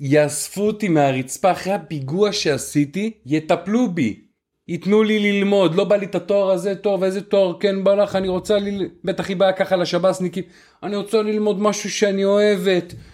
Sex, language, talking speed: male, Hebrew, 170 wpm